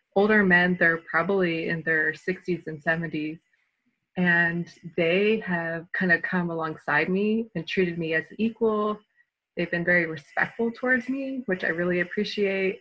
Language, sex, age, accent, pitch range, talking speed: English, female, 20-39, American, 165-200 Hz, 150 wpm